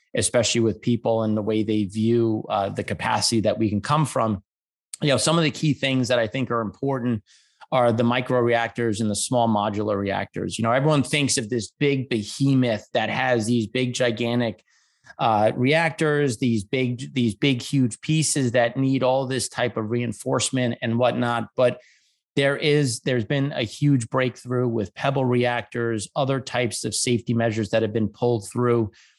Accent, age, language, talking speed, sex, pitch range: American, 30-49, English, 180 wpm, male, 115-135 Hz